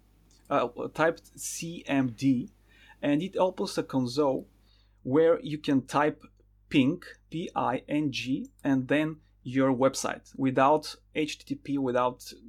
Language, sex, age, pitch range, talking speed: English, male, 30-49, 125-150 Hz, 100 wpm